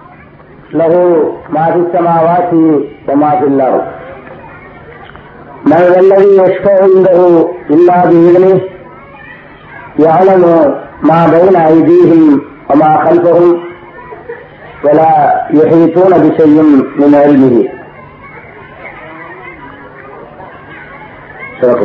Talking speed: 65 wpm